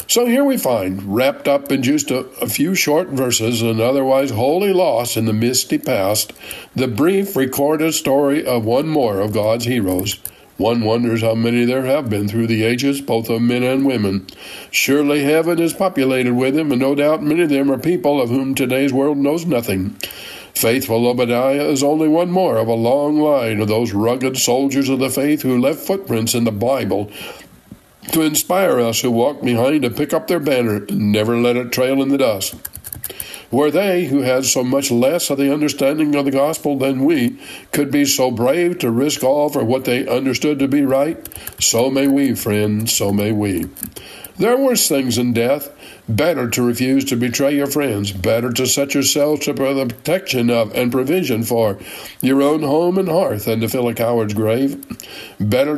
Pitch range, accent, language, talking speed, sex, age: 115-145 Hz, American, English, 195 wpm, male, 60-79